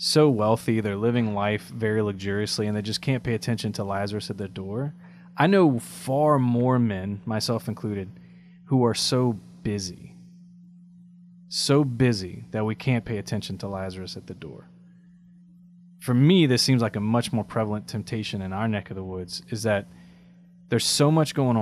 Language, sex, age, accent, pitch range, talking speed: English, male, 30-49, American, 105-155 Hz, 175 wpm